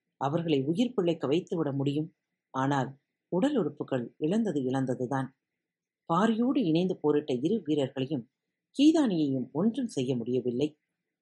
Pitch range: 135-185 Hz